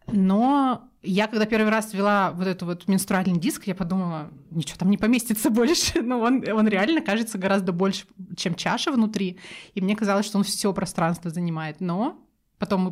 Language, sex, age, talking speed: Russian, female, 20-39, 180 wpm